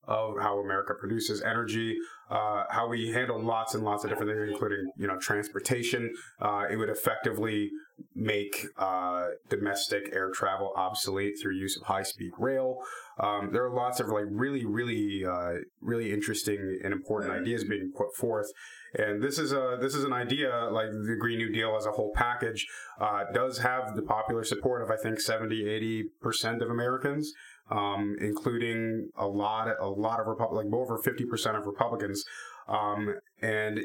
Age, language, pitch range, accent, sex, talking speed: 30-49, English, 105-125 Hz, American, male, 170 wpm